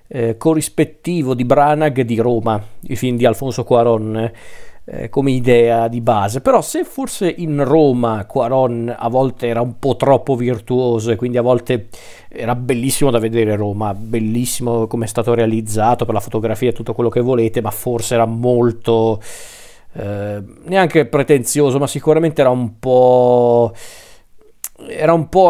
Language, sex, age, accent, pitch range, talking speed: Italian, male, 40-59, native, 115-130 Hz, 155 wpm